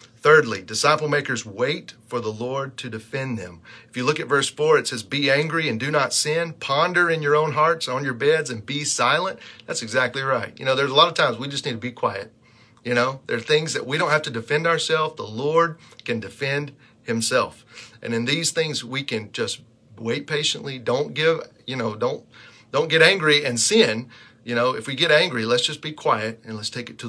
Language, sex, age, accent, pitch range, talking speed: English, male, 40-59, American, 115-150 Hz, 225 wpm